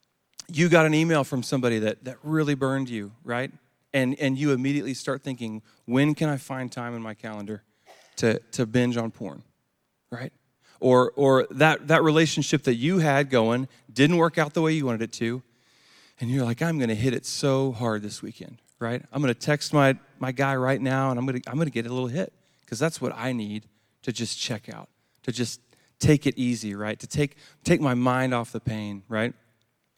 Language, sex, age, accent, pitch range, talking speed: English, male, 40-59, American, 120-150 Hz, 205 wpm